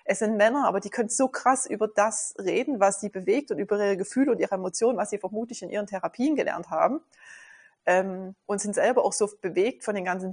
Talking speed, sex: 225 wpm, female